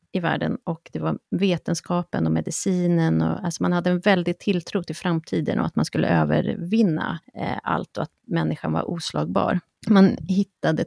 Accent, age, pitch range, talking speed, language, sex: native, 30-49, 165-200 Hz, 165 wpm, Swedish, female